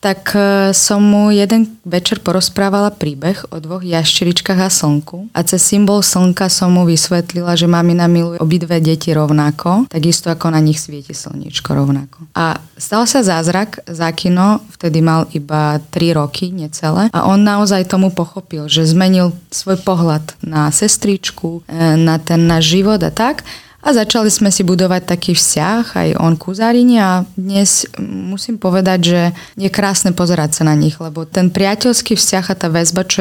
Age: 20-39